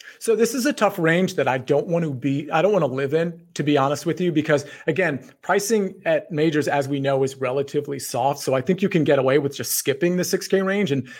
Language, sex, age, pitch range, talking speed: English, male, 40-59, 140-190 Hz, 255 wpm